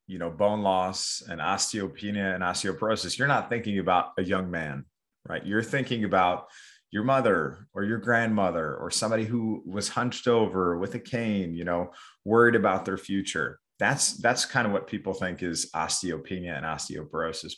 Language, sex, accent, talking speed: English, male, American, 170 wpm